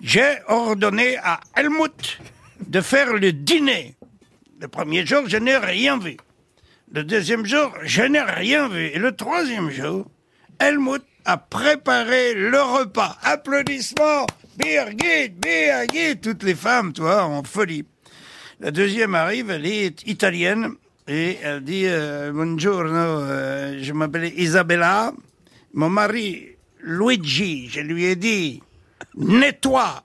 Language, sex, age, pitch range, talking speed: French, male, 60-79, 180-280 Hz, 130 wpm